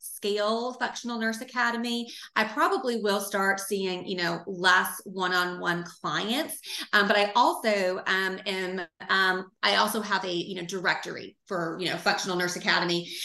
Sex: female